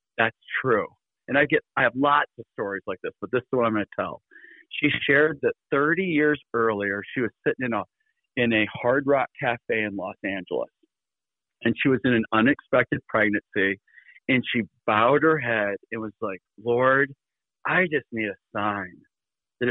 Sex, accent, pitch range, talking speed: male, American, 115-155 Hz, 185 wpm